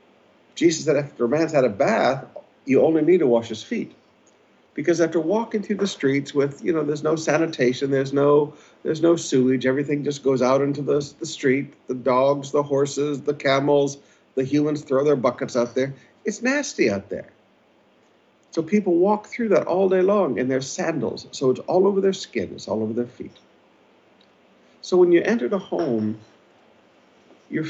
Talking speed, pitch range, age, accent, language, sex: 185 wpm, 125-165 Hz, 50-69, American, English, male